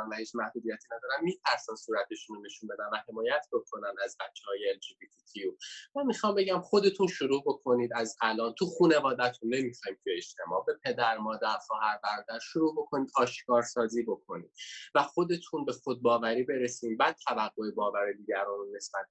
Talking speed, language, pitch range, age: 150 wpm, Persian, 120-155 Hz, 20-39